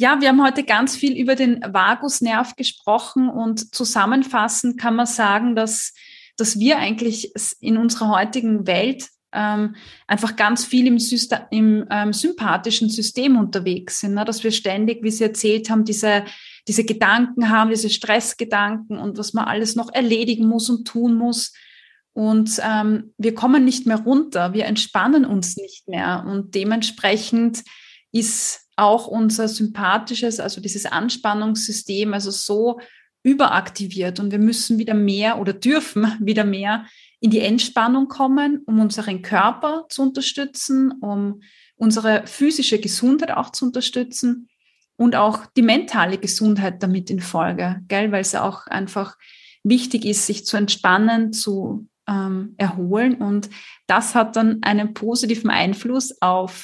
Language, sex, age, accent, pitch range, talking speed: German, female, 20-39, German, 210-240 Hz, 145 wpm